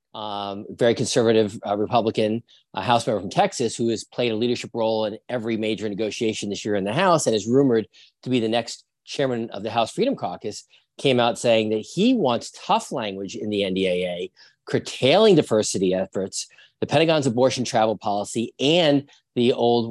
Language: English